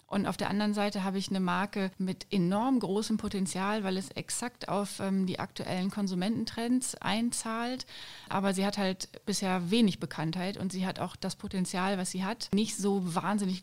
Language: German